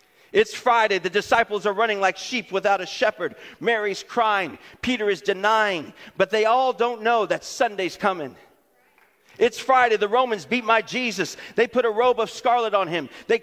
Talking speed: 180 wpm